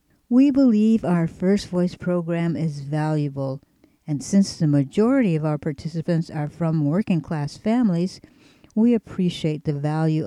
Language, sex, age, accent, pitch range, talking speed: English, female, 60-79, American, 150-195 Hz, 135 wpm